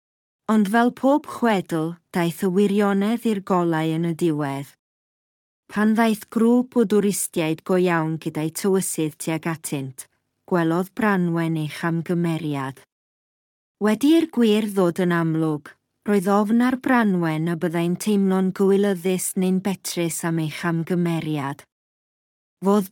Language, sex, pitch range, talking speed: English, female, 165-205 Hz, 120 wpm